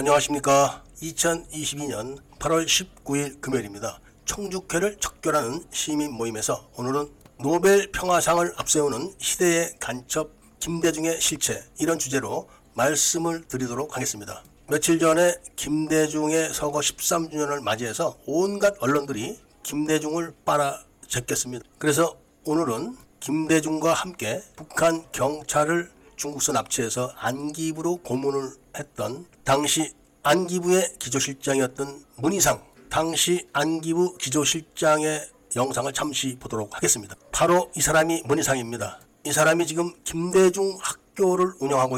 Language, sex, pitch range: Korean, male, 135-170 Hz